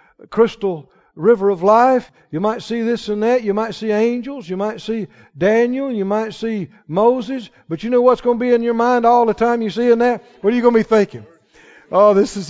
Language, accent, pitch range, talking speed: English, American, 165-245 Hz, 235 wpm